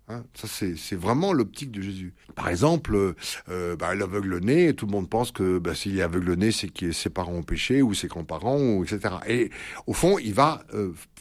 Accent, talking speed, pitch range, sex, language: French, 230 wpm, 95-140 Hz, male, French